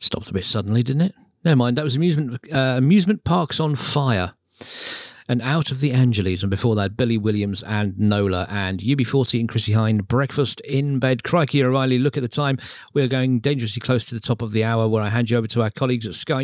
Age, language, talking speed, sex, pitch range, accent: 40-59, English, 225 wpm, male, 105-135 Hz, British